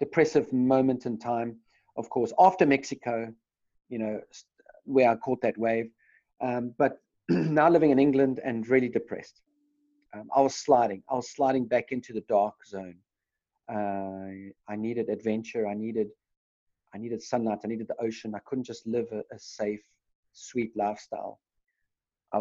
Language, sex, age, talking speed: English, male, 40-59, 160 wpm